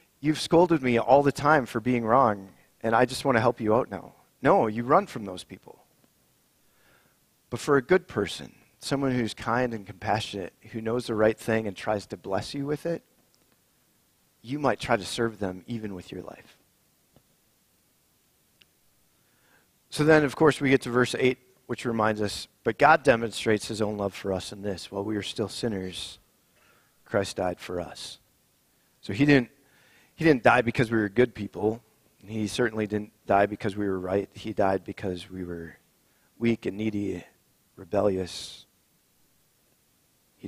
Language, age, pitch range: English, 40-59, 100-125 Hz